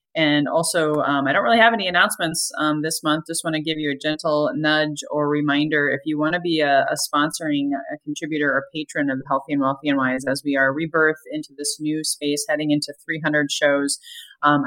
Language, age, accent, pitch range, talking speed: English, 20-39, American, 145-165 Hz, 215 wpm